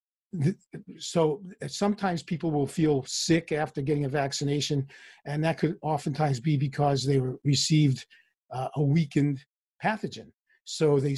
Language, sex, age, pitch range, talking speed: English, male, 50-69, 135-160 Hz, 130 wpm